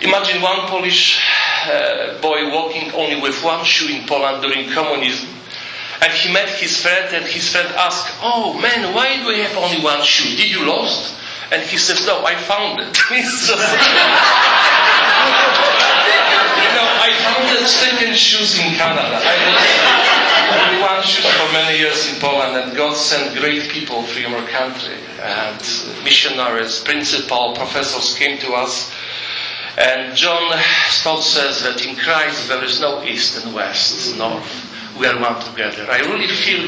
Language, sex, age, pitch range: English, male, 40-59, 135-185 Hz